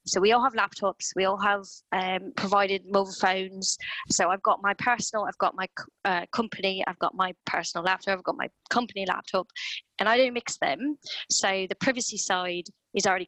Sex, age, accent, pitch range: female, 20-39, British, 185-235 Hz